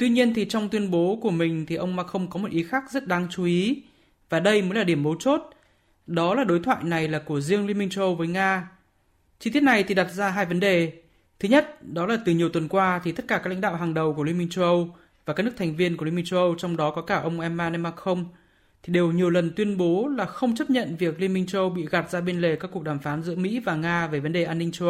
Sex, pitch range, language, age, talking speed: male, 170-205 Hz, Vietnamese, 20-39, 295 wpm